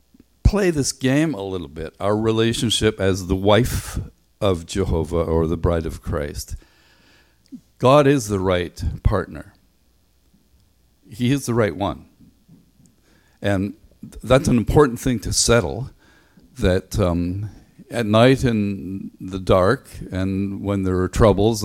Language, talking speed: English, 130 wpm